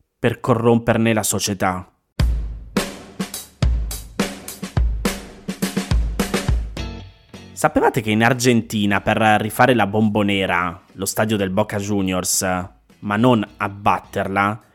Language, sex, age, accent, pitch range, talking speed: Italian, male, 20-39, native, 100-130 Hz, 80 wpm